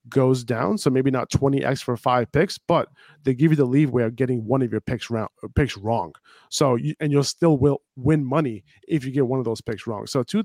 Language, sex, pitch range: English, male, 130-155 Hz